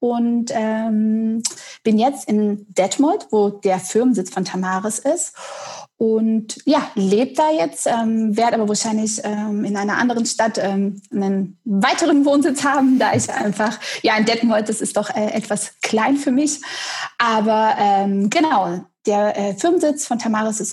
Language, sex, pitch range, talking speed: German, female, 210-265 Hz, 155 wpm